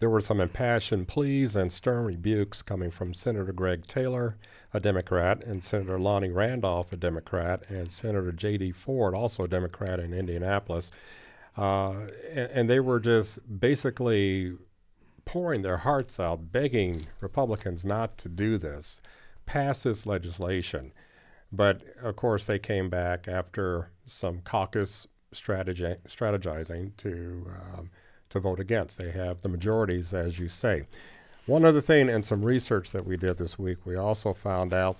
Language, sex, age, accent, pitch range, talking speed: English, male, 50-69, American, 90-110 Hz, 150 wpm